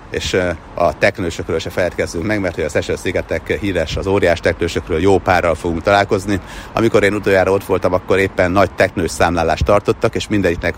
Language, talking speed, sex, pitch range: Hungarian, 180 wpm, male, 85-100 Hz